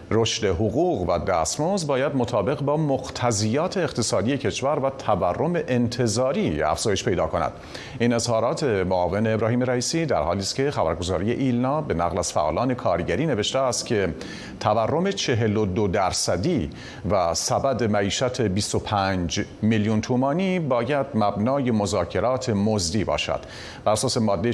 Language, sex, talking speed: Persian, male, 125 wpm